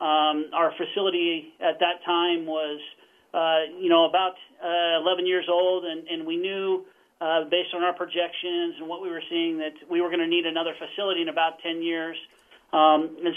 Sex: male